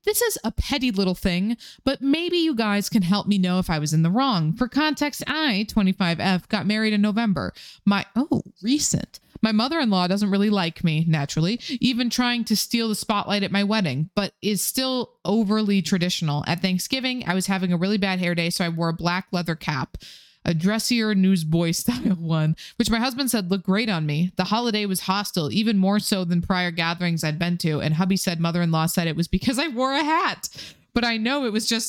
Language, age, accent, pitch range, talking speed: English, 20-39, American, 180-235 Hz, 215 wpm